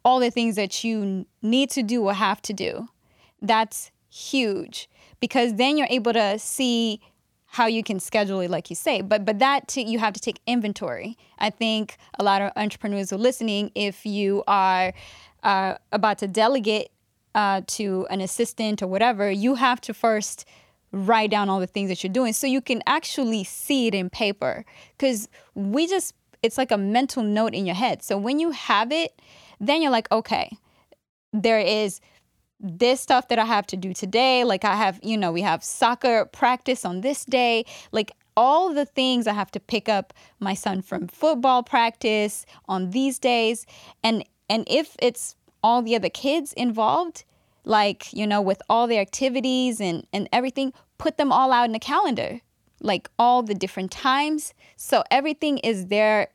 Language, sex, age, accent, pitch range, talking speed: English, female, 10-29, American, 200-250 Hz, 185 wpm